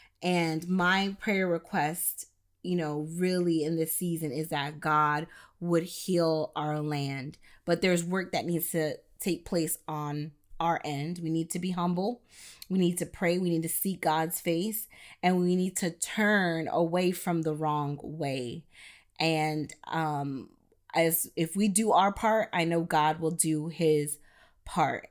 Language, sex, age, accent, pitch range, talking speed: English, female, 20-39, American, 155-185 Hz, 160 wpm